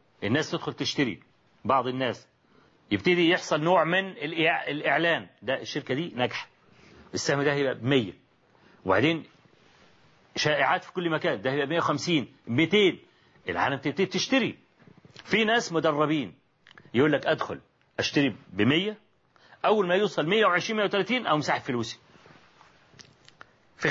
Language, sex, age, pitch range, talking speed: Arabic, male, 40-59, 140-190 Hz, 120 wpm